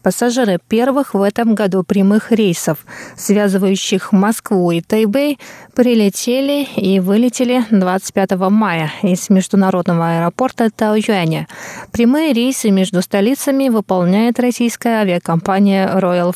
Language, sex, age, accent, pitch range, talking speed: Russian, female, 20-39, native, 195-240 Hz, 105 wpm